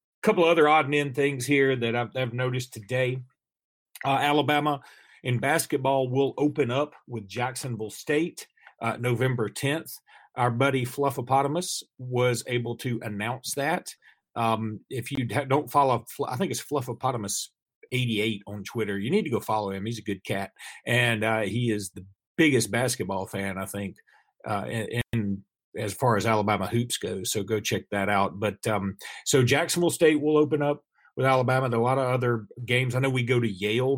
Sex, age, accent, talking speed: male, 40-59, American, 180 wpm